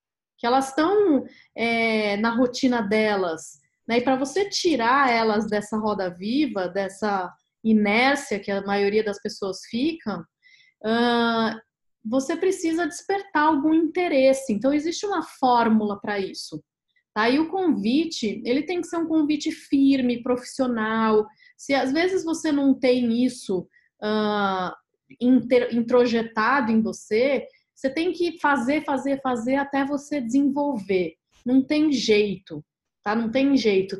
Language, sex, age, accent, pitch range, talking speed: Portuguese, female, 20-39, Brazilian, 210-280 Hz, 130 wpm